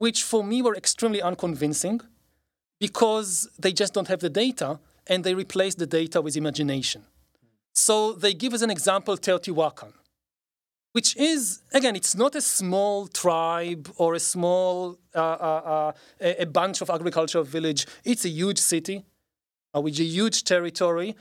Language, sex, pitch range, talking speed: English, male, 170-225 Hz, 155 wpm